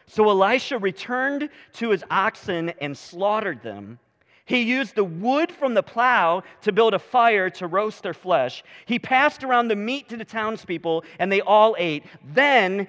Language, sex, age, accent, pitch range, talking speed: English, male, 40-59, American, 180-240 Hz, 170 wpm